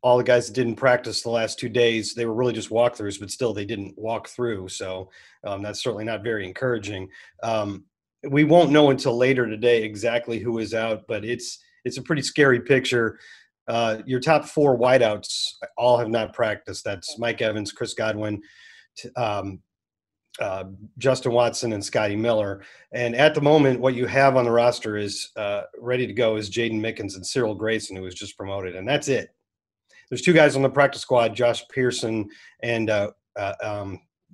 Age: 40-59